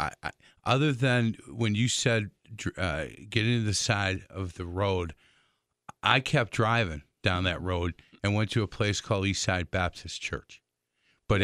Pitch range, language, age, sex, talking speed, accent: 95-120 Hz, English, 50-69, male, 155 wpm, American